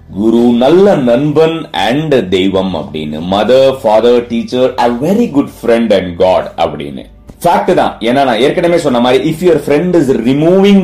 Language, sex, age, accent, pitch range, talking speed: Tamil, male, 30-49, native, 100-150 Hz, 155 wpm